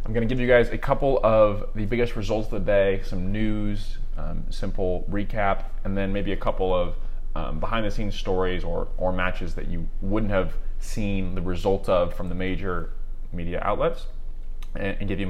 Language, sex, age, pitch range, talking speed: English, male, 20-39, 90-100 Hz, 200 wpm